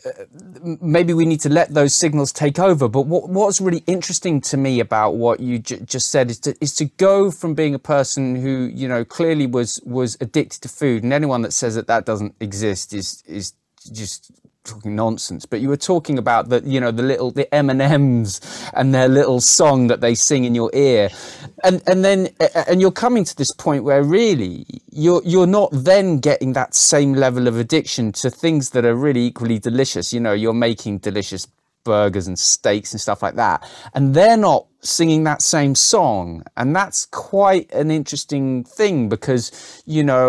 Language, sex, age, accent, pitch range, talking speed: English, male, 30-49, British, 115-155 Hz, 195 wpm